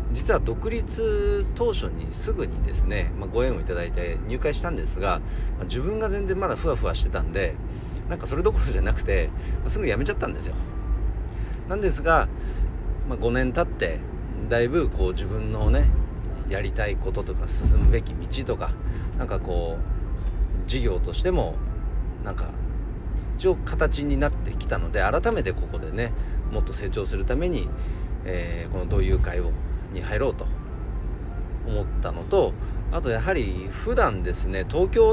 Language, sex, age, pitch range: Japanese, male, 40-59, 85-145 Hz